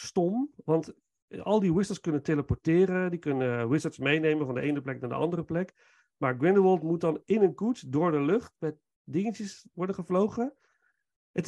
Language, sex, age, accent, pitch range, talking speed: Dutch, male, 40-59, Dutch, 140-185 Hz, 180 wpm